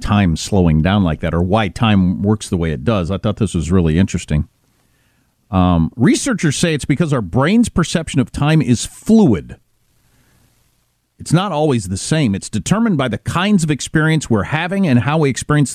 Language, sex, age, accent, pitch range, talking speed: English, male, 50-69, American, 115-170 Hz, 185 wpm